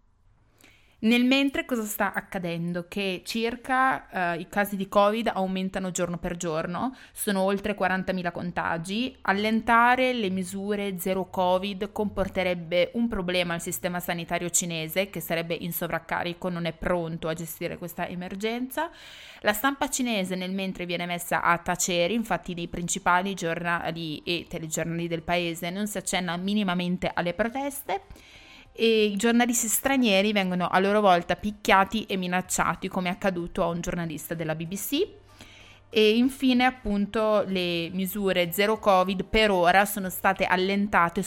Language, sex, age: Italian, female, 20-39